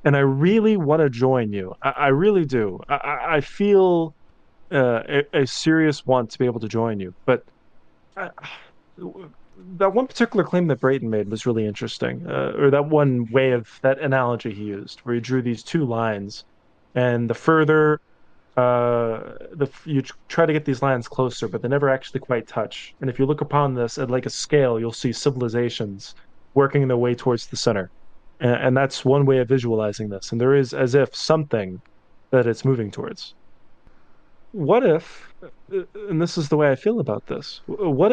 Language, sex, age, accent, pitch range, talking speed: English, male, 20-39, American, 120-155 Hz, 190 wpm